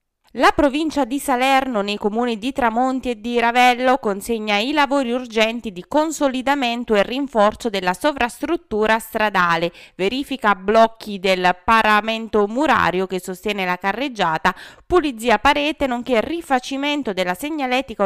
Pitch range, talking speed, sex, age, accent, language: 195-275 Hz, 125 wpm, female, 20-39, native, Italian